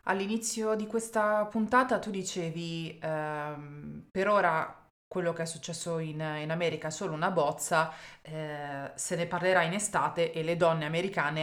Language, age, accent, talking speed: Italian, 20-39, native, 160 wpm